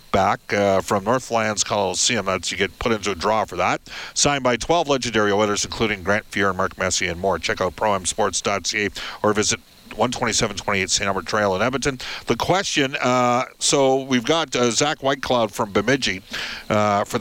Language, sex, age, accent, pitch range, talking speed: English, male, 50-69, American, 105-130 Hz, 180 wpm